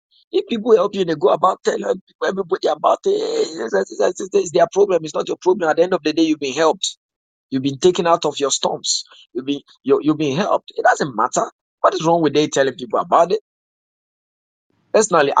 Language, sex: English, male